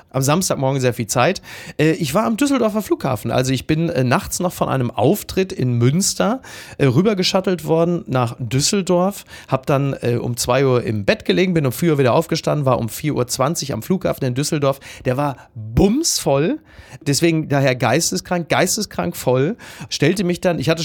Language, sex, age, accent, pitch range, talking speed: German, male, 30-49, German, 130-180 Hz, 175 wpm